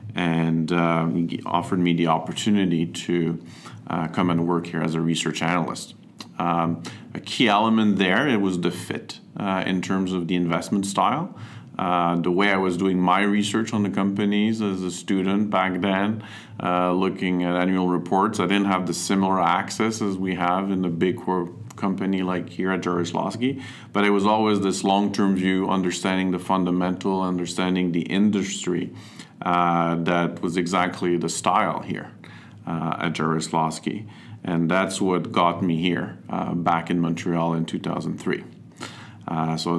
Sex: male